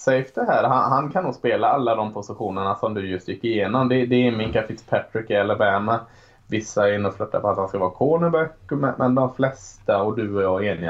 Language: Swedish